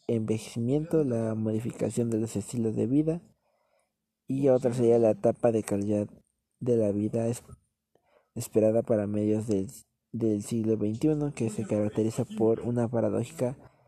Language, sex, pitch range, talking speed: Spanish, male, 110-125 Hz, 135 wpm